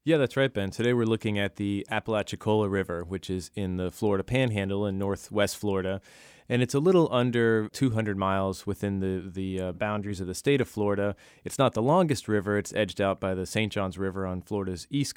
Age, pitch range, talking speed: 20-39, 95-110 Hz, 210 wpm